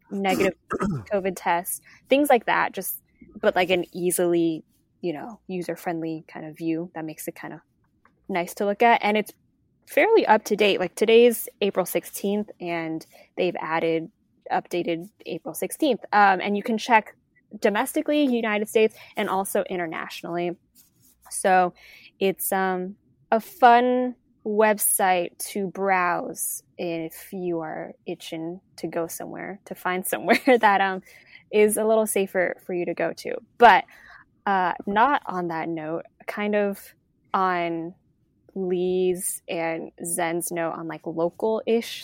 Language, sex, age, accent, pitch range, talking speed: English, female, 10-29, American, 175-220 Hz, 140 wpm